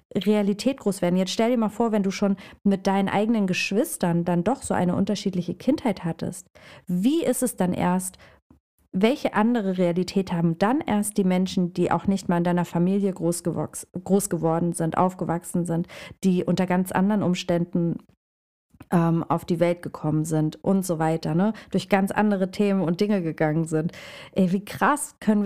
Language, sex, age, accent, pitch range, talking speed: German, female, 40-59, German, 180-220 Hz, 170 wpm